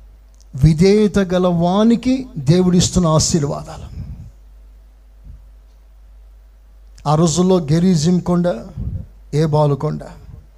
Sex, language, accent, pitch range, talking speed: male, Telugu, native, 150-230 Hz, 60 wpm